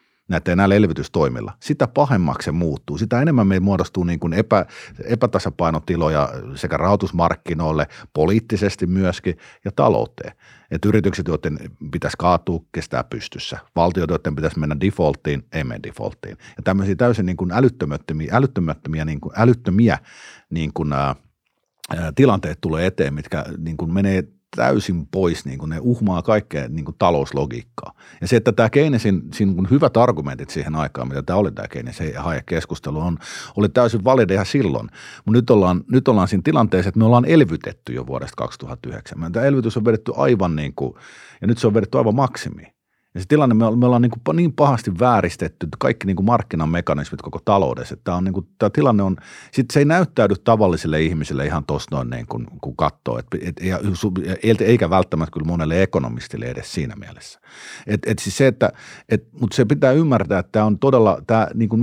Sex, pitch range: male, 80-115 Hz